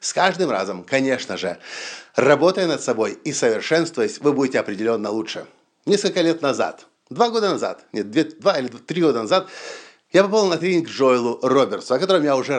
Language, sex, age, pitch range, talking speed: Russian, male, 50-69, 135-190 Hz, 170 wpm